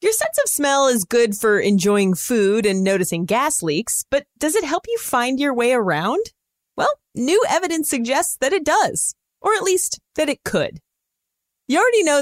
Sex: female